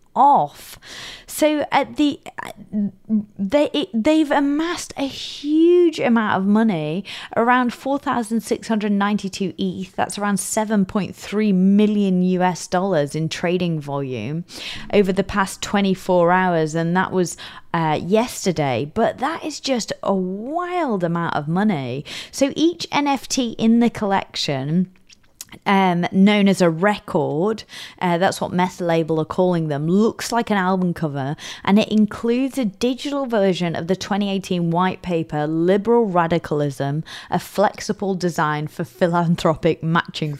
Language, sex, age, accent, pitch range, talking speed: English, female, 20-39, British, 170-230 Hz, 130 wpm